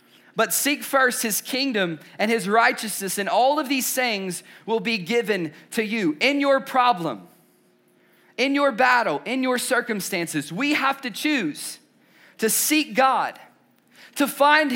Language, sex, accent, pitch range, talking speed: English, male, American, 200-270 Hz, 145 wpm